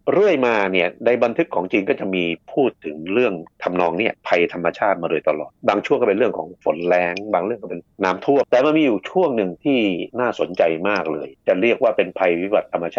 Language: Thai